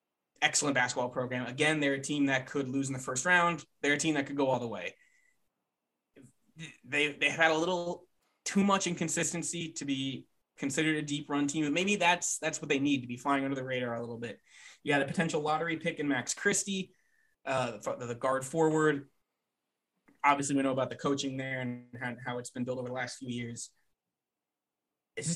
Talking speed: 205 wpm